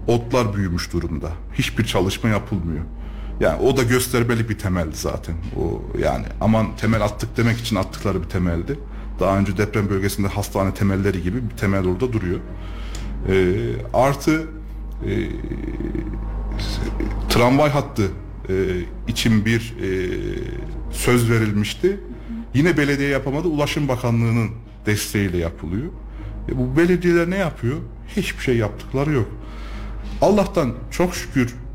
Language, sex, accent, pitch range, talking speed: Turkish, male, native, 105-135 Hz, 120 wpm